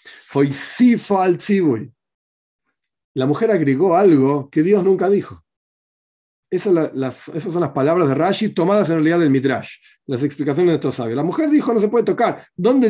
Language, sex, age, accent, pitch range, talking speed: Spanish, male, 40-59, Argentinian, 140-205 Hz, 165 wpm